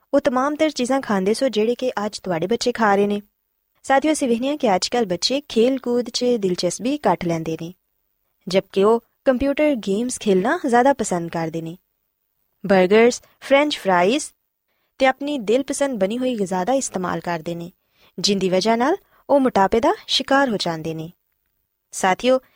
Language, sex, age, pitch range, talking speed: Punjabi, female, 20-39, 190-270 Hz, 155 wpm